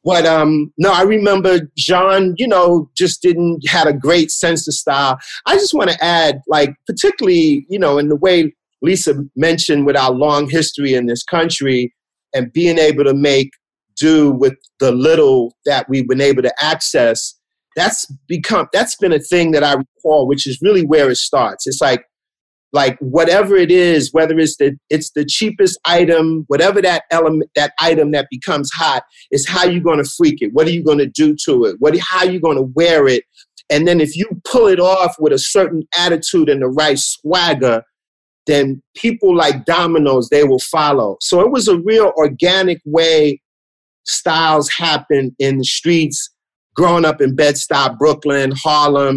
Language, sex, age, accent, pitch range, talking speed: English, male, 40-59, American, 145-180 Hz, 185 wpm